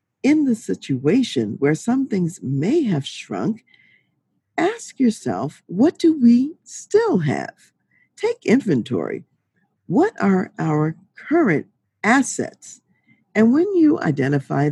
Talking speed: 110 wpm